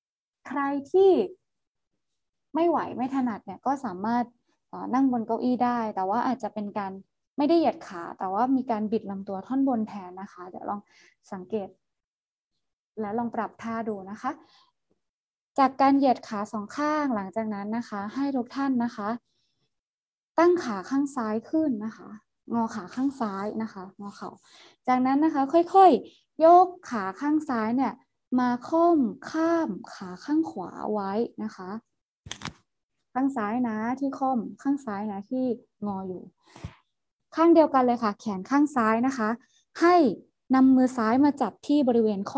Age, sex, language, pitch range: 20-39, female, Thai, 210-275 Hz